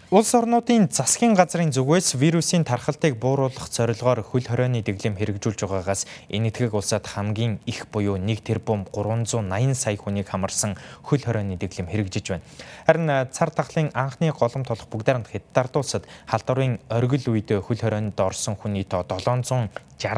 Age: 20-39